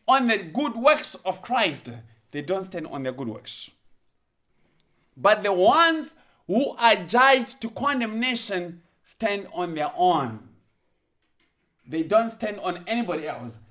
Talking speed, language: 135 wpm, English